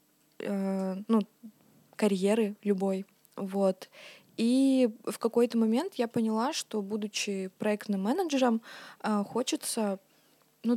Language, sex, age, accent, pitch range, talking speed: Russian, female, 20-39, native, 200-240 Hz, 90 wpm